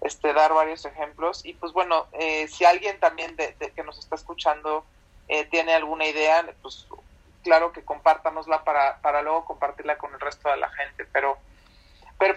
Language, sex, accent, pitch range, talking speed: Spanish, male, Mexican, 155-200 Hz, 180 wpm